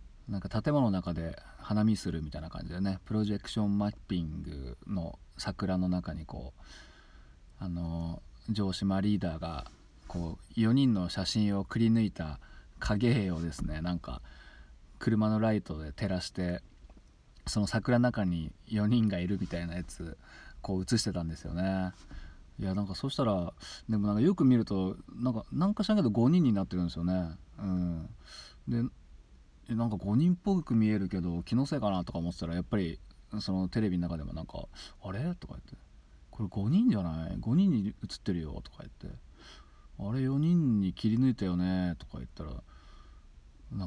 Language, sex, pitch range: Japanese, male, 80-105 Hz